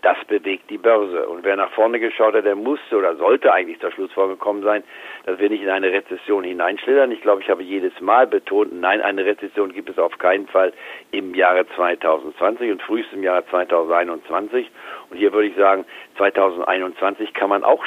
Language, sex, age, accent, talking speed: German, male, 60-79, German, 195 wpm